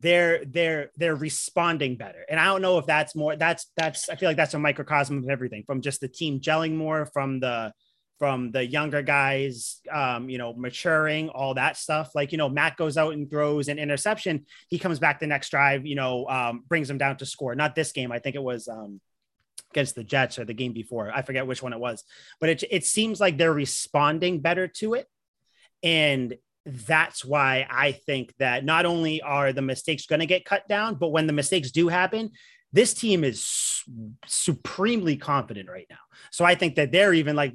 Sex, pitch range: male, 140-185 Hz